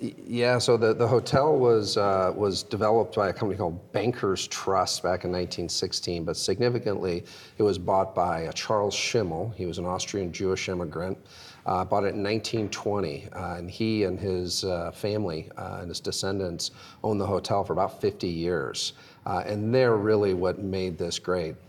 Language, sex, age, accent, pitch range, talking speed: English, male, 40-59, American, 90-105 Hz, 175 wpm